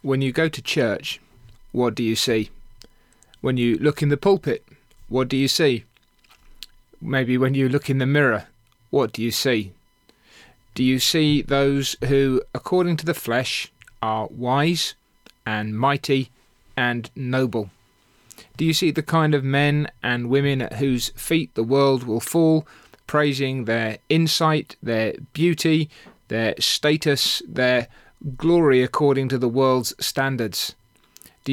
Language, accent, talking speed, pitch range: English, British, 145 wpm, 120-145 Hz